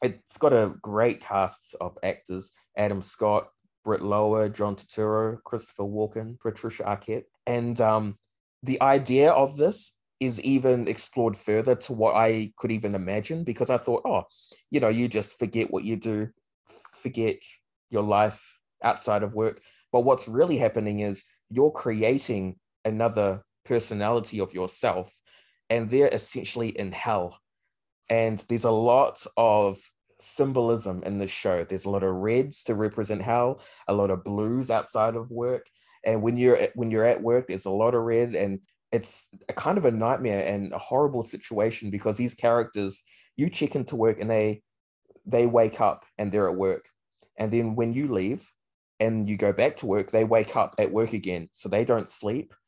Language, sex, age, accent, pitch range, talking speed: English, male, 20-39, Australian, 100-120 Hz, 170 wpm